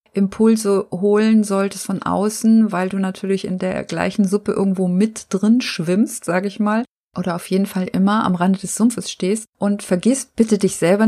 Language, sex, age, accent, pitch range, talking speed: German, female, 30-49, German, 185-215 Hz, 185 wpm